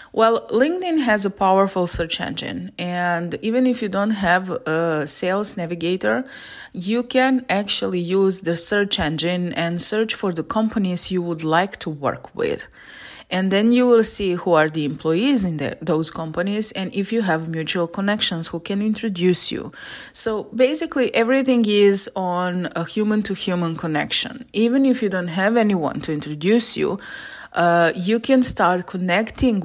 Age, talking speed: 30-49, 160 wpm